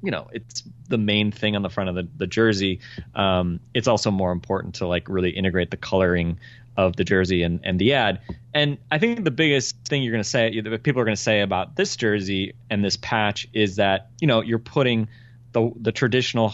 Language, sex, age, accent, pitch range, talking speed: English, male, 30-49, American, 95-120 Hz, 220 wpm